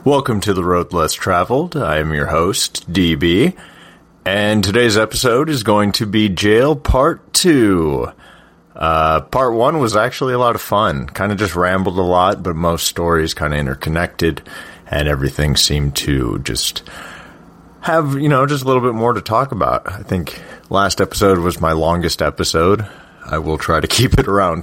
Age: 30-49